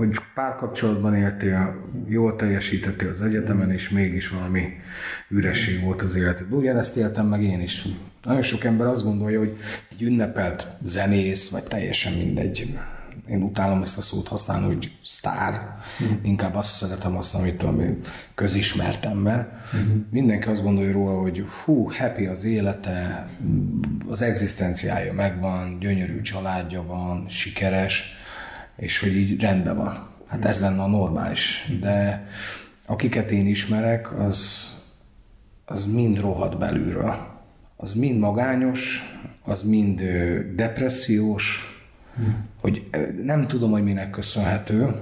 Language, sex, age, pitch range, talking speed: Hungarian, male, 30-49, 95-110 Hz, 125 wpm